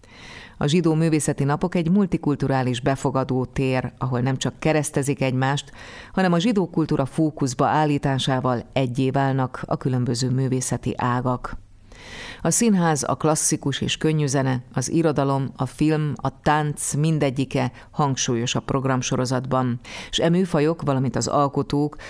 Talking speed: 130 wpm